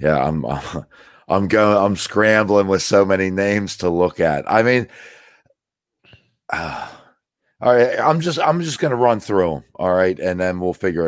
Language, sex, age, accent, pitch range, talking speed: English, male, 50-69, American, 80-105 Hz, 175 wpm